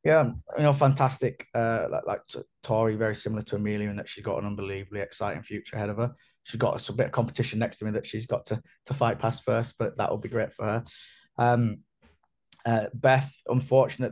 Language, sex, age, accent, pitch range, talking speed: English, male, 10-29, British, 105-120 Hz, 215 wpm